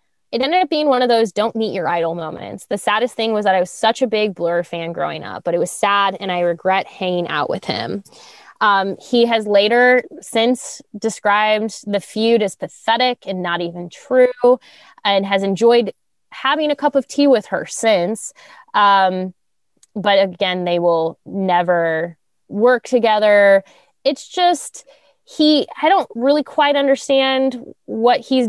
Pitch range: 185-255 Hz